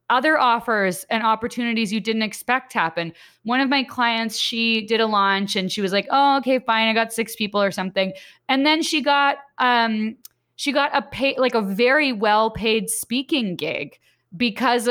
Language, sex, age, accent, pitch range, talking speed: English, female, 20-39, American, 190-240 Hz, 180 wpm